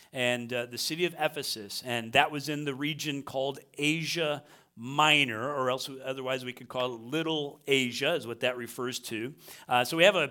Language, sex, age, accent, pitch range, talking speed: English, male, 50-69, American, 130-155 Hz, 200 wpm